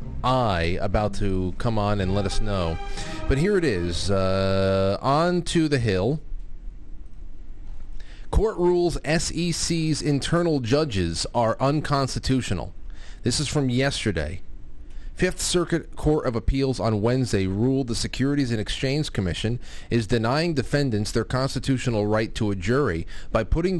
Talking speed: 135 wpm